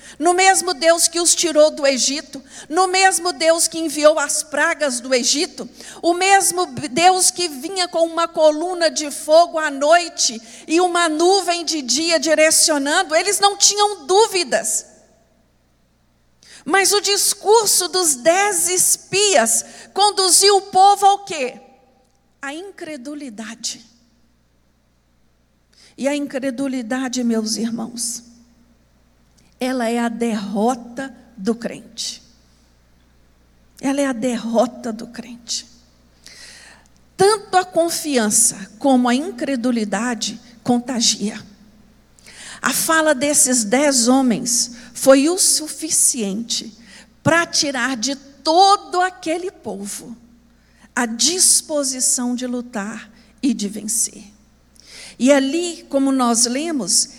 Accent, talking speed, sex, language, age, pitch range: Brazilian, 105 wpm, female, Portuguese, 50-69, 230-330 Hz